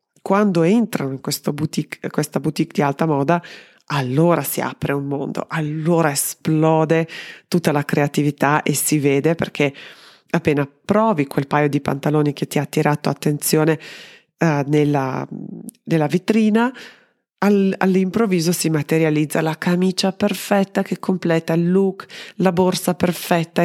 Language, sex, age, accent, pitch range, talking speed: Italian, female, 30-49, native, 145-185 Hz, 130 wpm